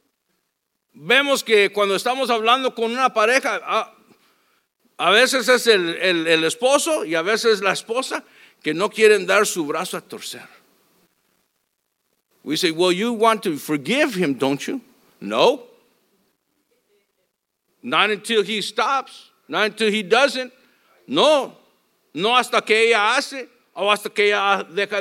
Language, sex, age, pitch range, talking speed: English, male, 50-69, 200-275 Hz, 140 wpm